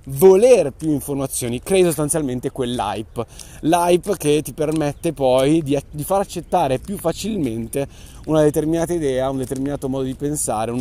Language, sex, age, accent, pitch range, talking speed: Italian, male, 30-49, native, 125-160 Hz, 140 wpm